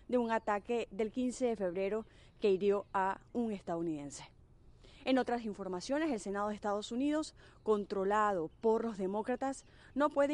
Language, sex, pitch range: Spanish, female, 185-235 Hz